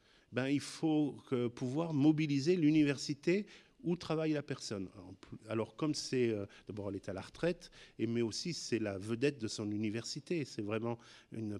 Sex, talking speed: male, 180 wpm